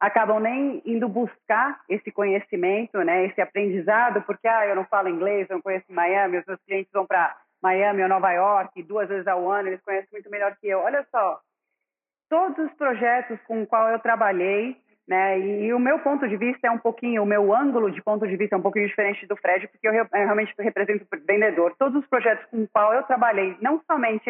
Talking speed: 210 wpm